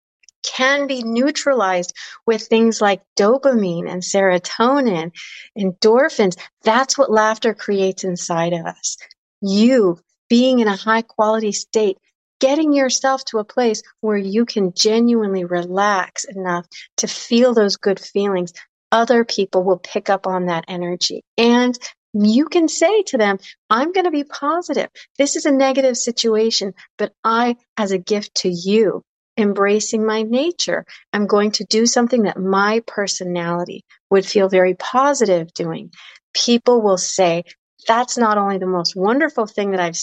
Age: 40-59